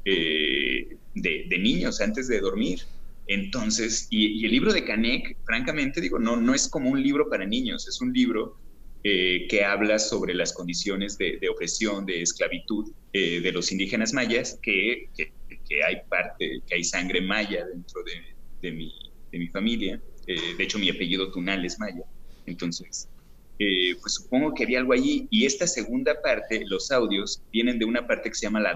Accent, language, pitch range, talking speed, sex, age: Mexican, Spanish, 95-135 Hz, 185 wpm, male, 30-49